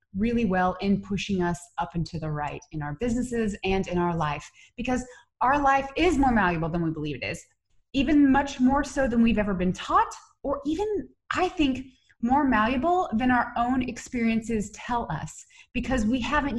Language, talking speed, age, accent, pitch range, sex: English, 190 wpm, 20-39, American, 180-270 Hz, female